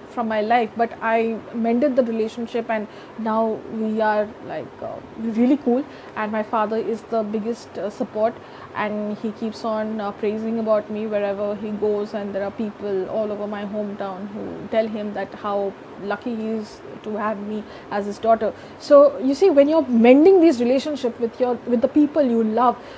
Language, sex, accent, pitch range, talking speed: English, female, Indian, 220-265 Hz, 190 wpm